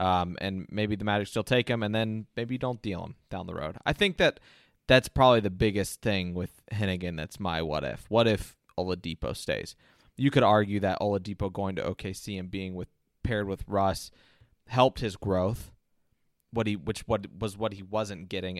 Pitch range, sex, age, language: 95-110 Hz, male, 20-39, English